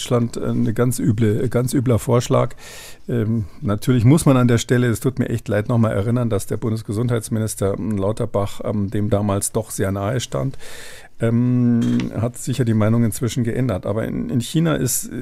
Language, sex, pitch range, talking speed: German, male, 105-125 Hz, 180 wpm